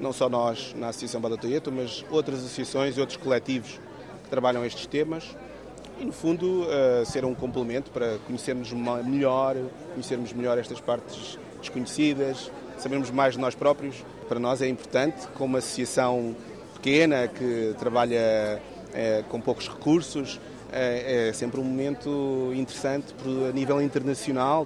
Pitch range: 120-140 Hz